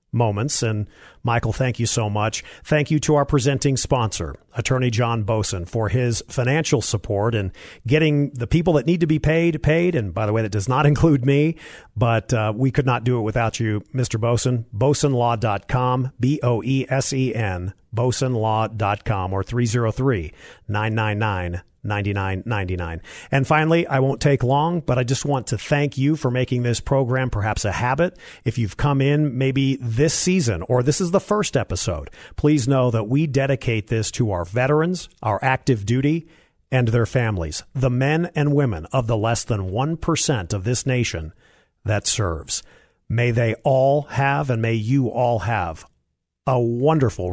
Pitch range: 110-140 Hz